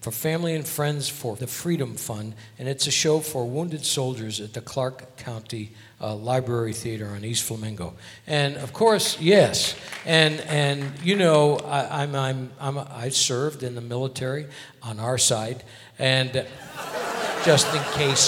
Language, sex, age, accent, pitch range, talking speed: English, male, 60-79, American, 115-140 Hz, 160 wpm